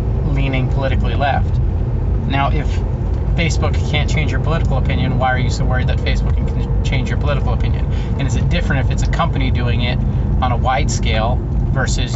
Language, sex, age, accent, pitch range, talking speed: English, male, 30-49, American, 90-120 Hz, 190 wpm